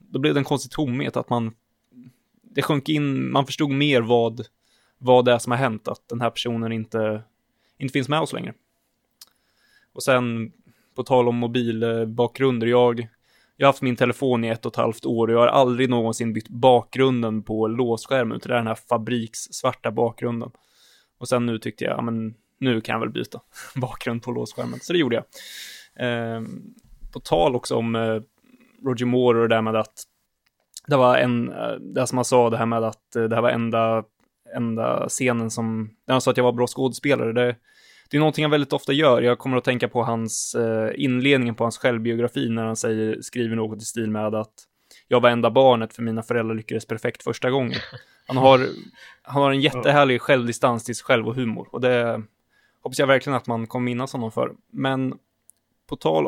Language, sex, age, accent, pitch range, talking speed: Swedish, male, 20-39, native, 115-130 Hz, 195 wpm